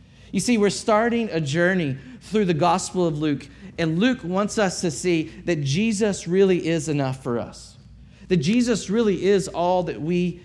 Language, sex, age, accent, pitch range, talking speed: English, male, 40-59, American, 145-205 Hz, 180 wpm